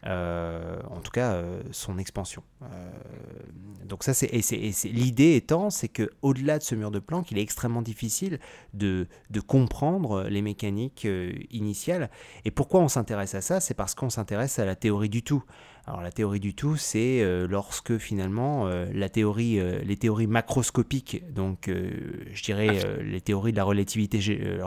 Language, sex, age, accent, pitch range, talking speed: French, male, 30-49, French, 95-120 Hz, 190 wpm